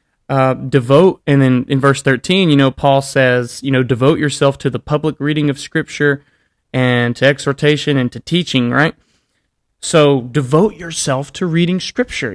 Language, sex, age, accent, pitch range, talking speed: English, male, 30-49, American, 130-155 Hz, 165 wpm